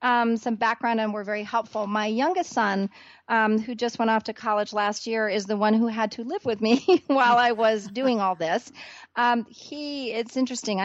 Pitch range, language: 205-240 Hz, English